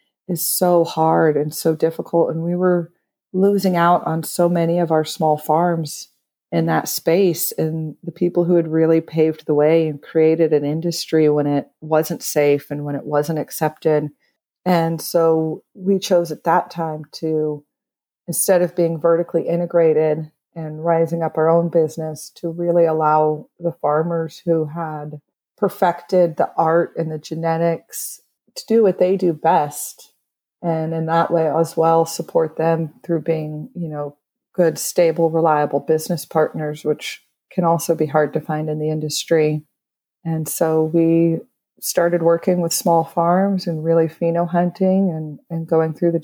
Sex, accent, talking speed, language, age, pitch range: female, American, 165 wpm, Hebrew, 40-59, 155-175 Hz